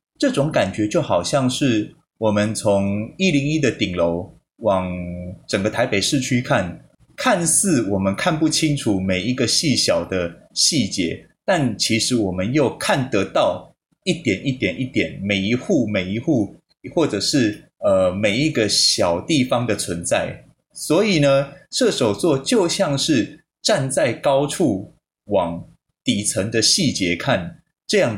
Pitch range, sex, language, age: 100-155 Hz, male, Chinese, 20-39